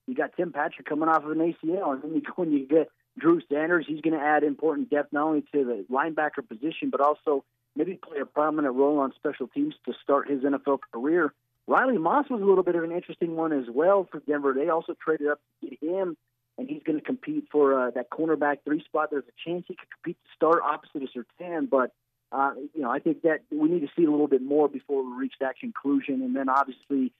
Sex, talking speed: male, 240 wpm